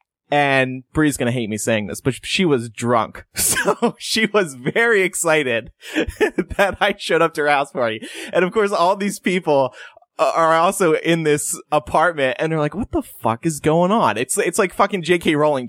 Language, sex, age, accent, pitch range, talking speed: English, male, 20-39, American, 120-180 Hz, 195 wpm